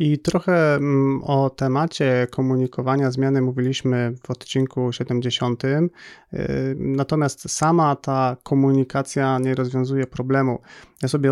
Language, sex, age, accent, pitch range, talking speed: Polish, male, 30-49, native, 125-140 Hz, 100 wpm